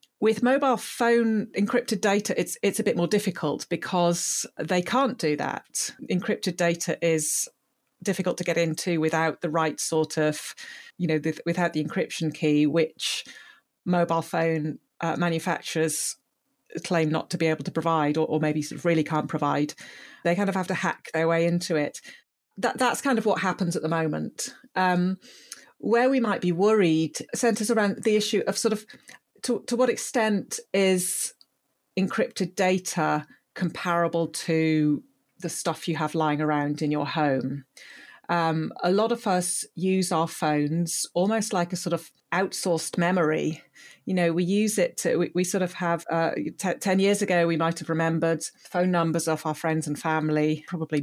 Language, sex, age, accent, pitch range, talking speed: English, female, 40-59, British, 160-200 Hz, 175 wpm